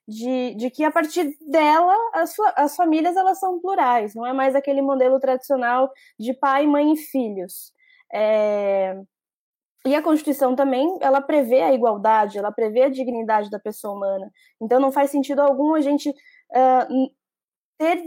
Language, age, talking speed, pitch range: Portuguese, 10-29, 150 wpm, 235-300 Hz